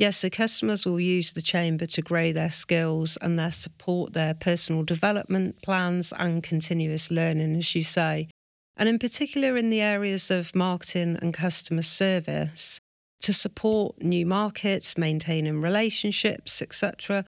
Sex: female